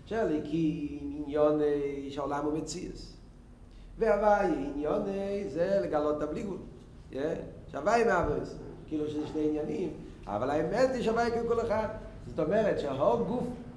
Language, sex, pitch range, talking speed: Hebrew, male, 150-220 Hz, 140 wpm